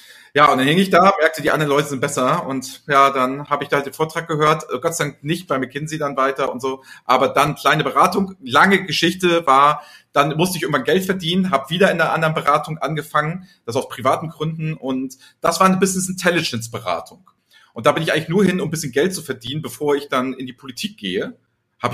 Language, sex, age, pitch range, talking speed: German, male, 40-59, 130-165 Hz, 225 wpm